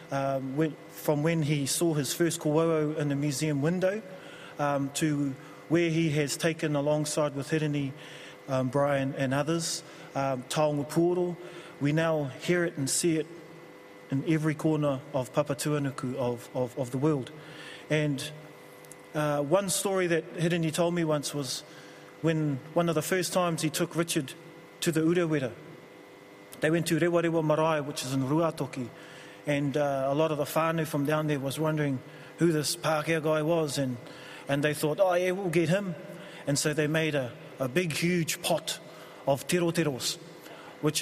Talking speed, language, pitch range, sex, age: 165 wpm, English, 140-170 Hz, male, 30-49